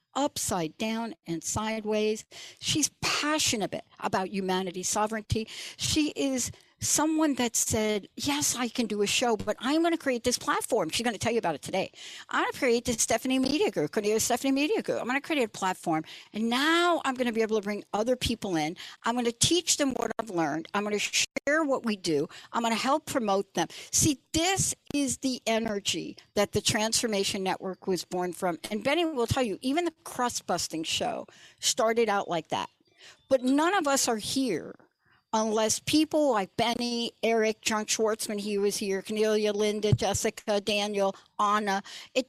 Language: English